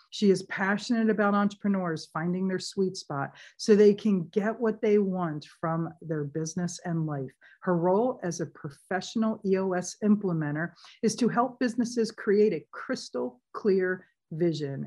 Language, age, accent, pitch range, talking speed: English, 50-69, American, 165-215 Hz, 150 wpm